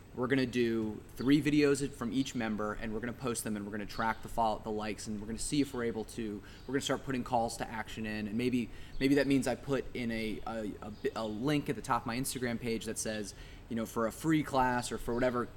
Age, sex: 20-39, male